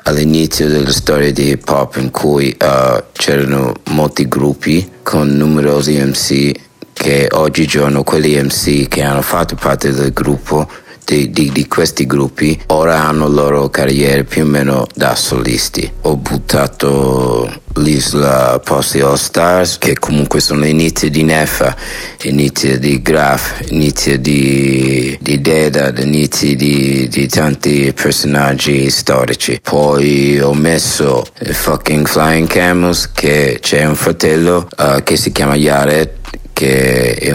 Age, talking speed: 60-79, 140 wpm